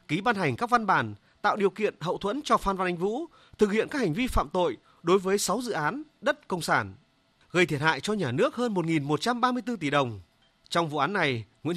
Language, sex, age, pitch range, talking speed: Vietnamese, male, 30-49, 150-230 Hz, 235 wpm